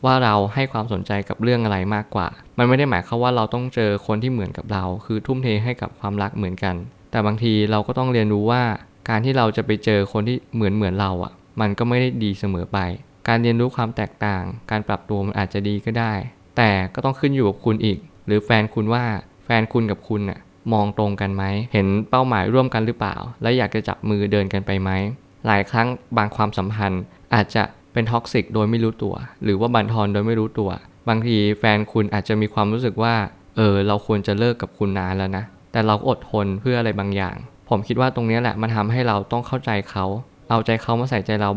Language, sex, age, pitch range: Thai, male, 20-39, 100-120 Hz